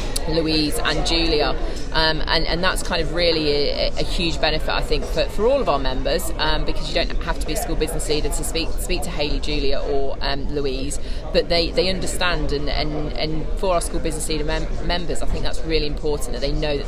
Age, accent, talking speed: 30-49, British, 230 wpm